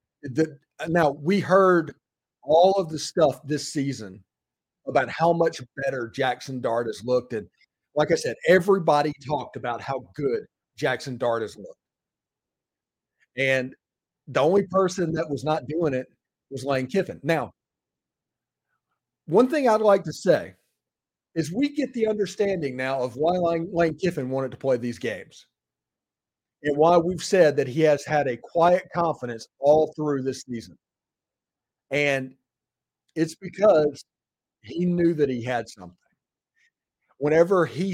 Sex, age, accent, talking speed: male, 40-59, American, 145 wpm